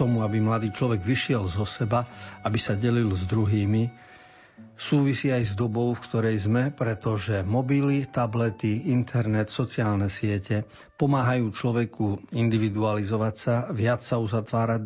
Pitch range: 110-125 Hz